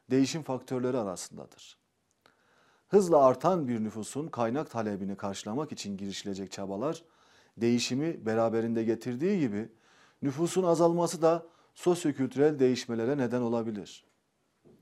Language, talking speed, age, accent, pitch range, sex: Turkish, 95 wpm, 40-59, native, 115-165 Hz, male